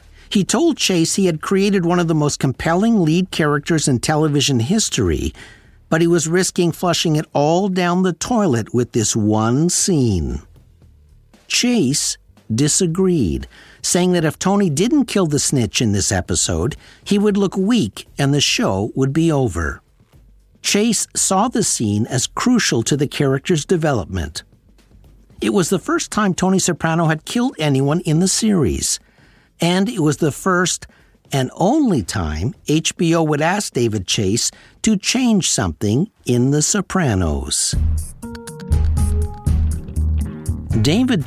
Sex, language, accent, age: male, English, American, 60-79